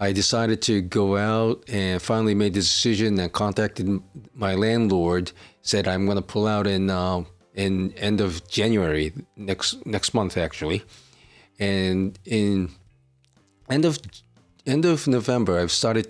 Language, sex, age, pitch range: Japanese, male, 40-59, 95-110 Hz